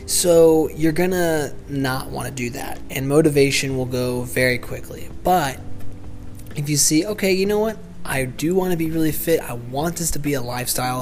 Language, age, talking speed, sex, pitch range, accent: English, 20-39, 200 wpm, male, 125-150 Hz, American